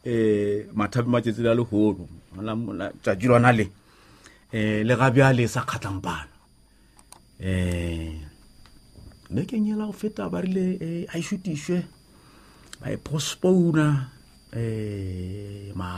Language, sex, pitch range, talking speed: English, male, 105-145 Hz, 60 wpm